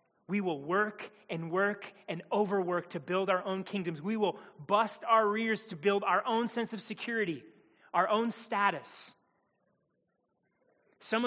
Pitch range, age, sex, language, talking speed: 165-215 Hz, 30-49, male, English, 150 wpm